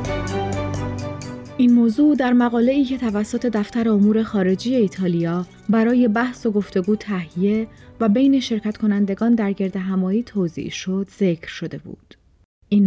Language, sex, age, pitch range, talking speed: Persian, female, 30-49, 185-230 Hz, 130 wpm